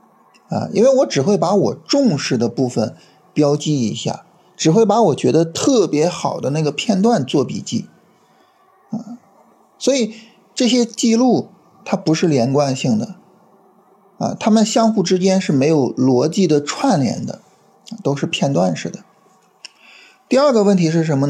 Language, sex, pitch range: Chinese, male, 145-225 Hz